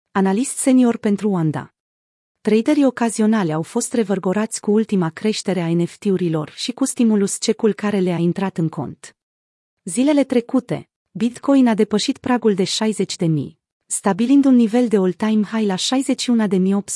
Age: 30-49